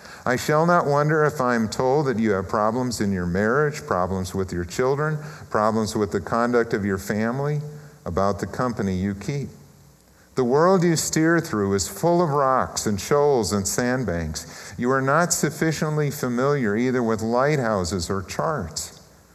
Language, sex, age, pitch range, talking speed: English, male, 50-69, 95-140 Hz, 170 wpm